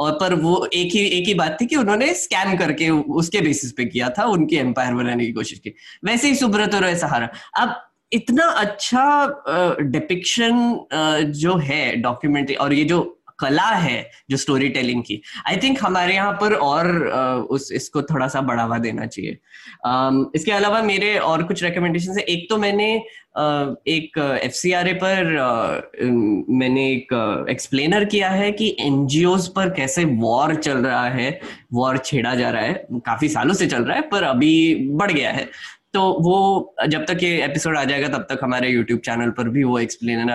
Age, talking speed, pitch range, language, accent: 10-29, 180 wpm, 130-185 Hz, Hindi, native